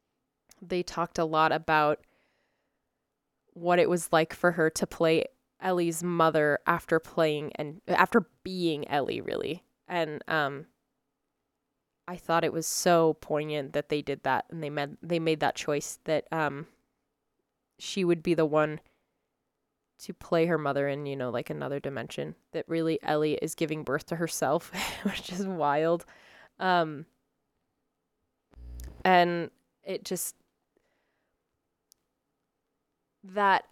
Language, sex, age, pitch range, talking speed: English, female, 20-39, 150-180 Hz, 130 wpm